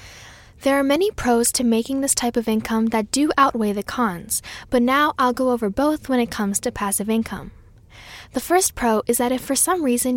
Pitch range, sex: 210-265 Hz, female